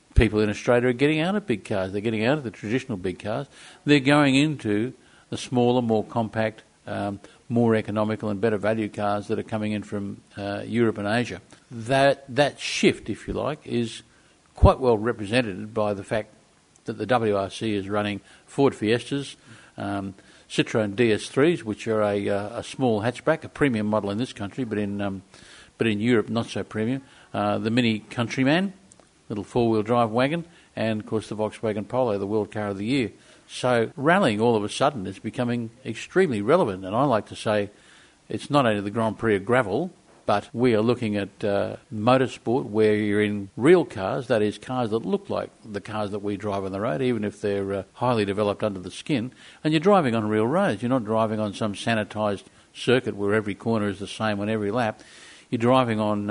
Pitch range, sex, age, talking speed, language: 105-125 Hz, male, 50-69, 200 wpm, English